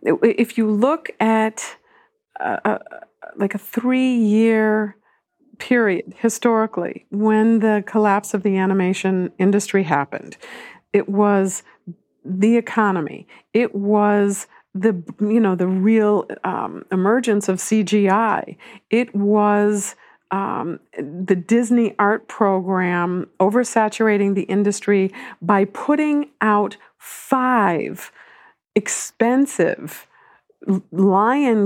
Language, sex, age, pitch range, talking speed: English, female, 50-69, 195-230 Hz, 95 wpm